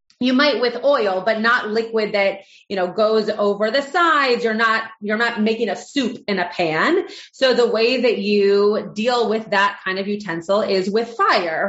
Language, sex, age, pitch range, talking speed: English, female, 30-49, 200-255 Hz, 195 wpm